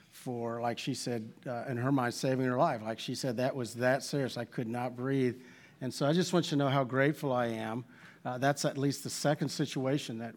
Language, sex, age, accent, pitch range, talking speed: English, male, 50-69, American, 125-155 Hz, 250 wpm